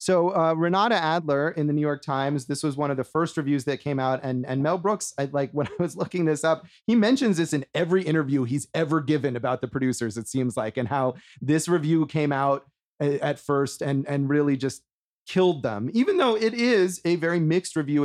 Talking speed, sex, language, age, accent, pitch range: 230 wpm, male, English, 30-49, American, 135-175 Hz